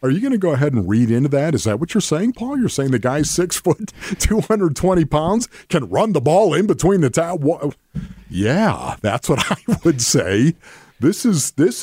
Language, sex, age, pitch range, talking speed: English, male, 50-69, 105-170 Hz, 210 wpm